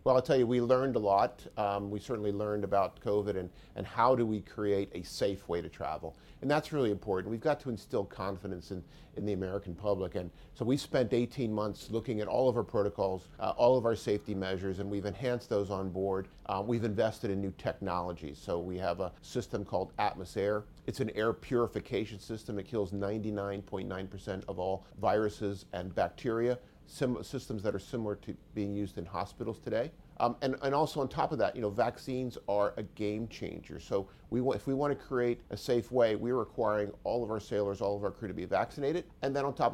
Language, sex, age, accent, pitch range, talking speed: English, male, 40-59, American, 100-120 Hz, 215 wpm